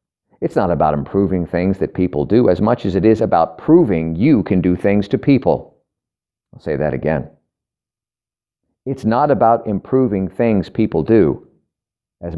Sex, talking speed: male, 160 wpm